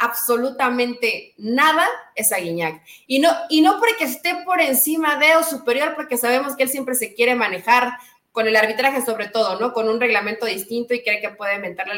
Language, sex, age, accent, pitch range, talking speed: Spanish, female, 30-49, Mexican, 225-305 Hz, 190 wpm